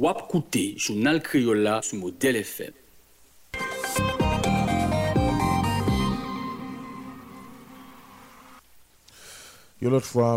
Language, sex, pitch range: French, male, 80-100 Hz